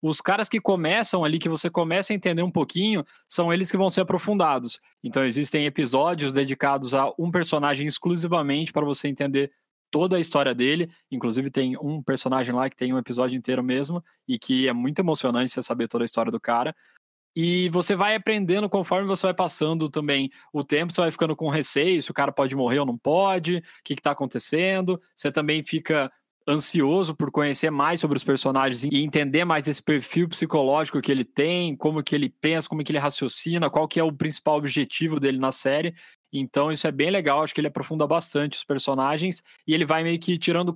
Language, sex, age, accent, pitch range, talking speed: Portuguese, male, 20-39, Brazilian, 140-175 Hz, 205 wpm